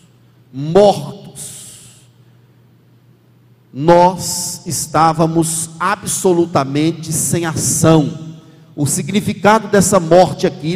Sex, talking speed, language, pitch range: male, 60 wpm, Portuguese, 155-195 Hz